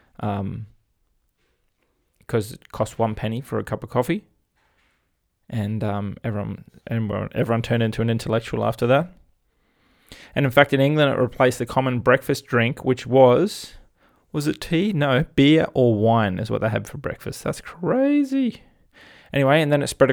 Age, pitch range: 20-39, 110-130 Hz